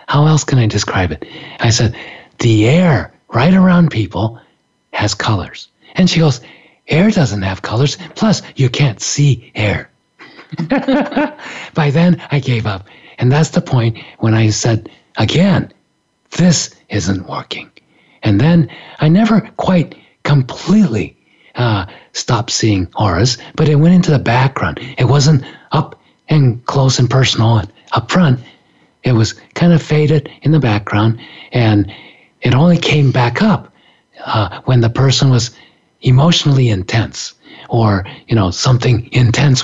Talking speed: 140 wpm